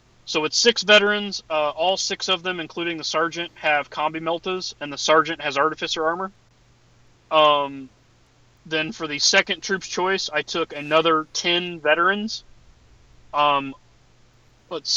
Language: English